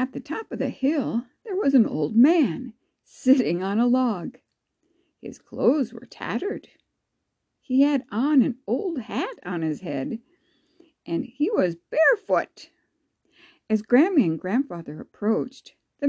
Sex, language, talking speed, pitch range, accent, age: female, English, 140 wpm, 210-315 Hz, American, 60-79